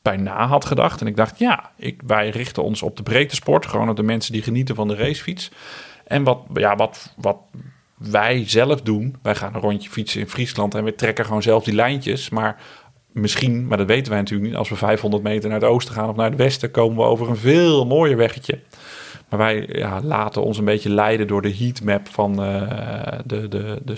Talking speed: 215 wpm